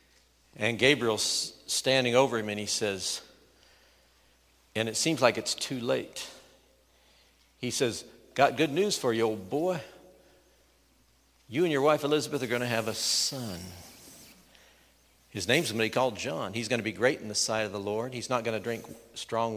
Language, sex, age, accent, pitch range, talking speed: English, male, 60-79, American, 100-135 Hz, 180 wpm